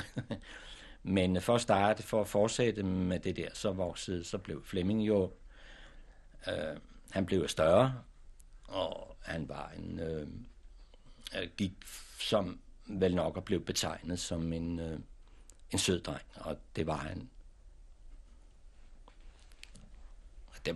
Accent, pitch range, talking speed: native, 80-105 Hz, 125 wpm